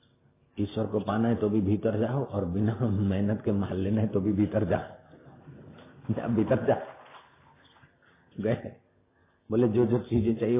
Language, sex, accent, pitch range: Hindi, male, native, 100-135 Hz